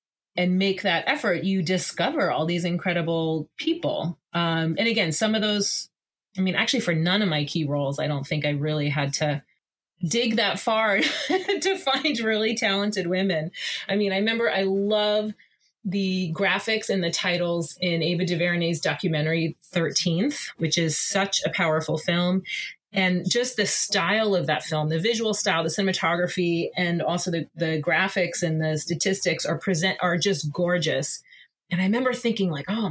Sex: female